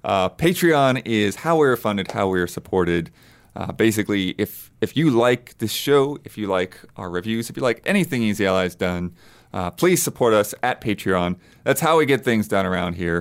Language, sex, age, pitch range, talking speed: English, male, 30-49, 95-120 Hz, 205 wpm